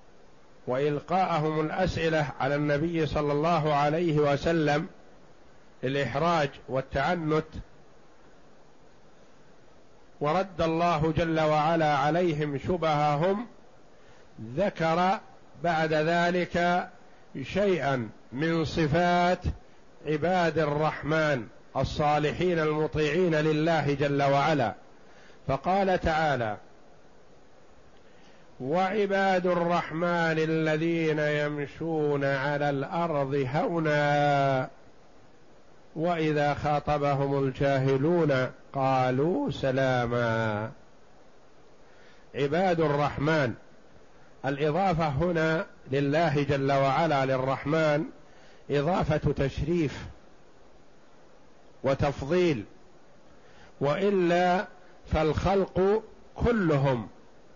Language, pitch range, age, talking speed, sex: Arabic, 140-170 Hz, 50-69, 60 wpm, male